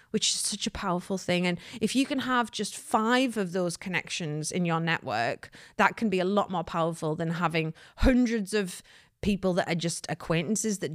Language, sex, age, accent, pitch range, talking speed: English, female, 30-49, British, 185-270 Hz, 195 wpm